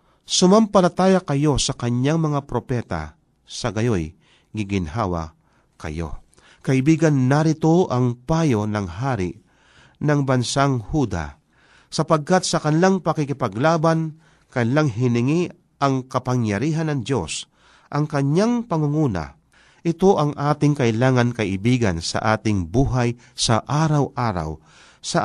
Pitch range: 115-160 Hz